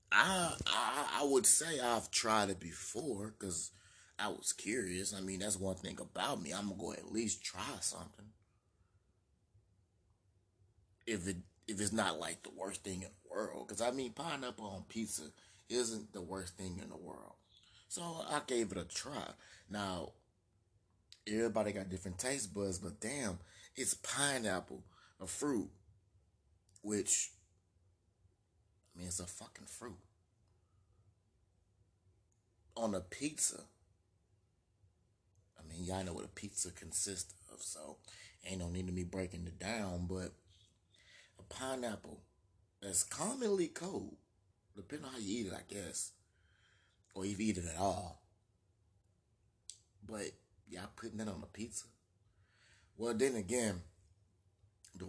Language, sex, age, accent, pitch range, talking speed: English, male, 30-49, American, 95-105 Hz, 140 wpm